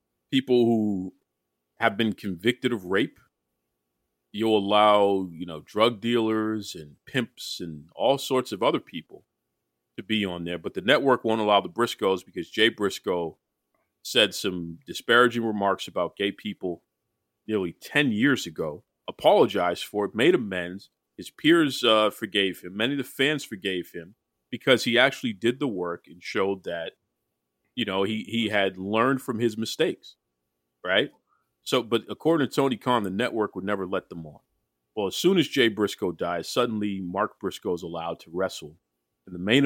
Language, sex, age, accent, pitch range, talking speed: English, male, 40-59, American, 75-125 Hz, 170 wpm